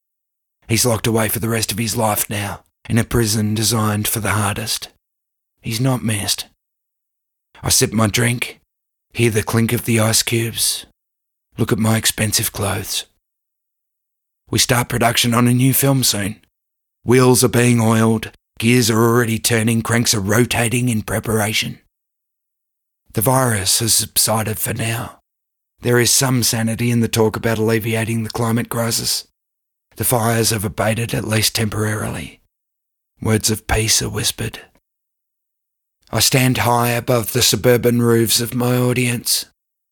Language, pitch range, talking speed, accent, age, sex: English, 110-125 Hz, 145 wpm, Australian, 30-49, male